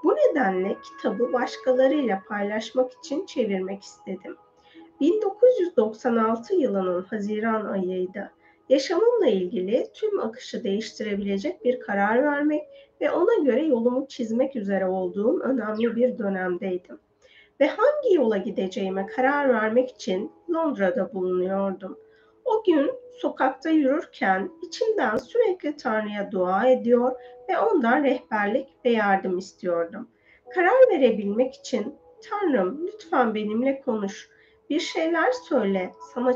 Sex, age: female, 30-49